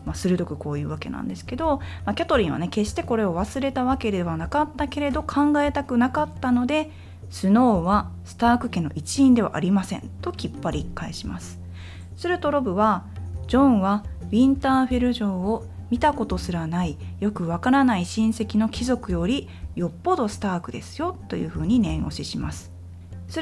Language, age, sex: Japanese, 20-39, female